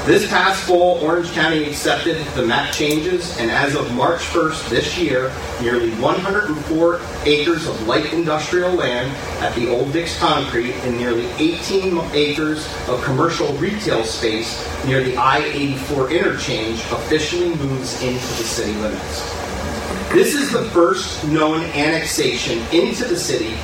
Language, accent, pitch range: English, American, 100-130 Hz